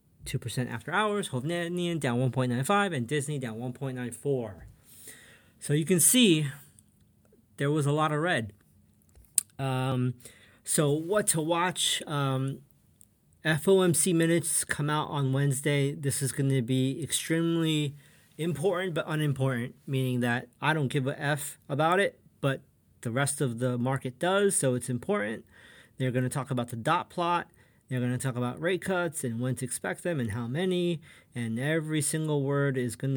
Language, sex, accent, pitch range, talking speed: English, male, American, 125-155 Hz, 160 wpm